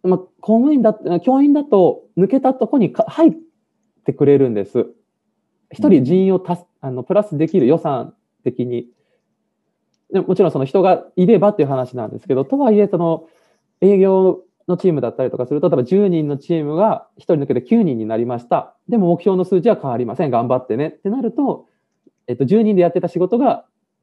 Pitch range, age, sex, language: 125-210 Hz, 20-39, male, Japanese